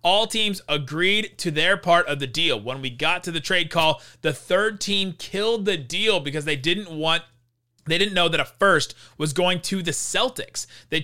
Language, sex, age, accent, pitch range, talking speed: English, male, 30-49, American, 145-195 Hz, 205 wpm